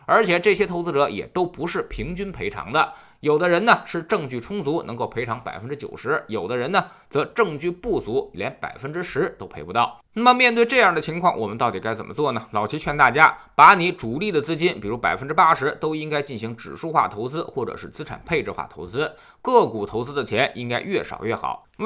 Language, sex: Chinese, male